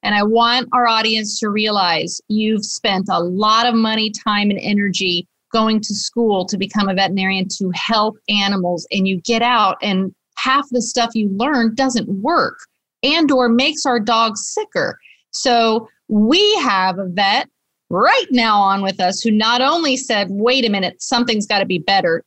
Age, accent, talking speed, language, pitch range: 40-59, American, 180 wpm, English, 200-250 Hz